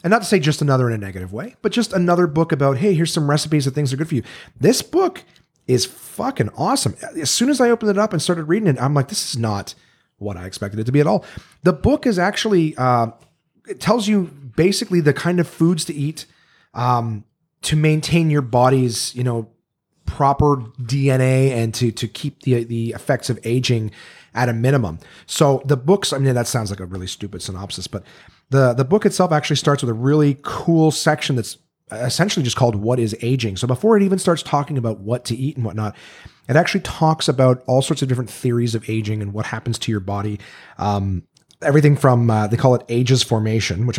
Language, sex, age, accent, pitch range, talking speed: English, male, 30-49, American, 115-160 Hz, 220 wpm